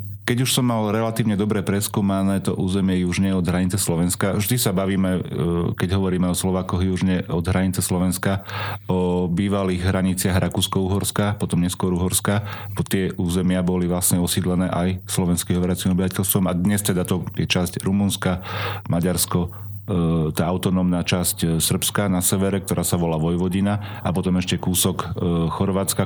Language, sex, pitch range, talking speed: Slovak, male, 90-105 Hz, 145 wpm